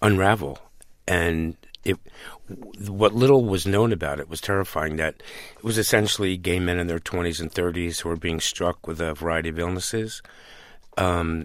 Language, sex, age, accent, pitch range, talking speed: English, male, 50-69, American, 85-95 Hz, 160 wpm